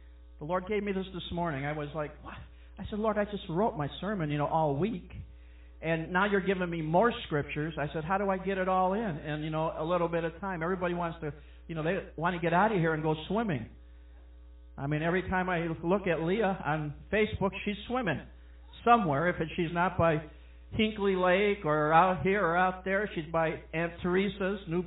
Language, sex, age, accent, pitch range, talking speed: English, male, 50-69, American, 140-185 Hz, 220 wpm